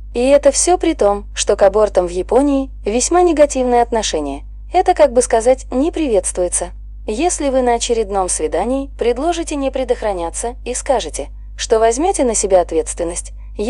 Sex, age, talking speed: female, 20-39, 150 wpm